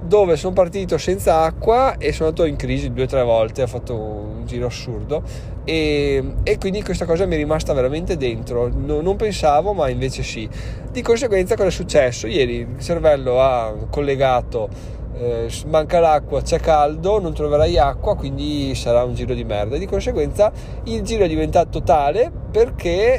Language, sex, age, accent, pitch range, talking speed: Italian, male, 20-39, native, 125-175 Hz, 170 wpm